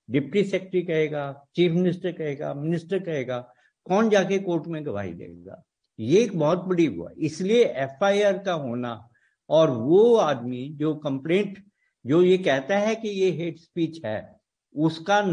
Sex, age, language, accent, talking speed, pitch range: male, 60-79, Hindi, native, 140 wpm, 145-195 Hz